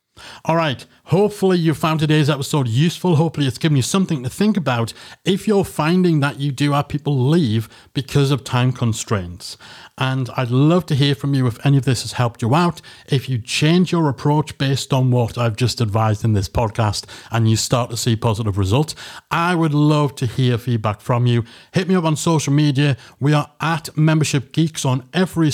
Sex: male